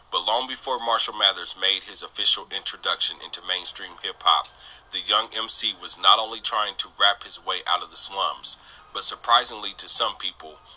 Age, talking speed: 30-49, 180 wpm